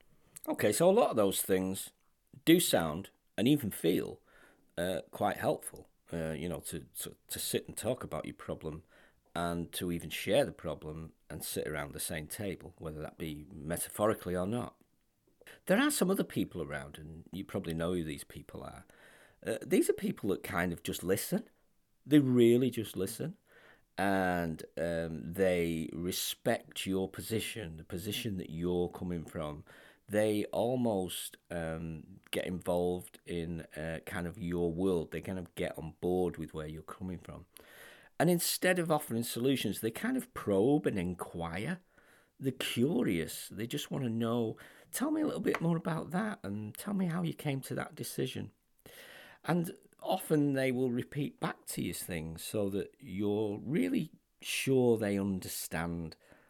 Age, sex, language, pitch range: 40-59, male, English, 85-120 Hz